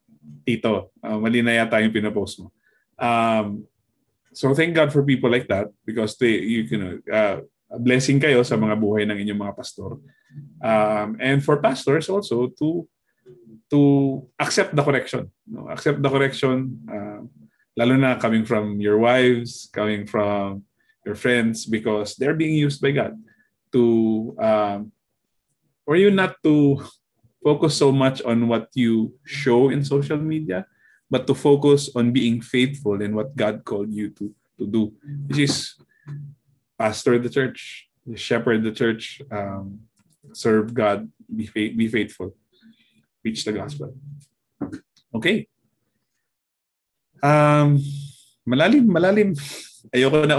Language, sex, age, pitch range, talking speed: Filipino, male, 20-39, 110-145 Hz, 135 wpm